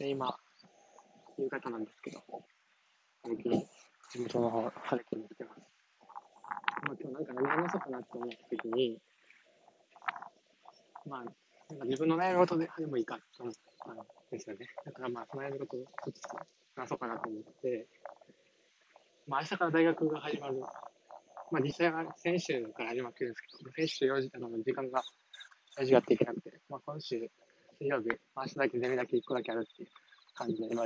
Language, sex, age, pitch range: Japanese, male, 20-39, 120-150 Hz